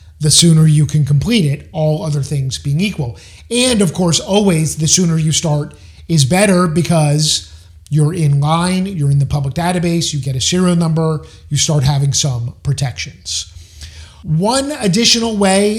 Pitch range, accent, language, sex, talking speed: 140-175 Hz, American, English, male, 165 wpm